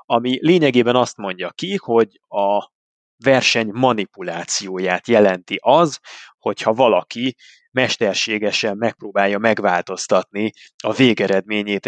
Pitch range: 100-130 Hz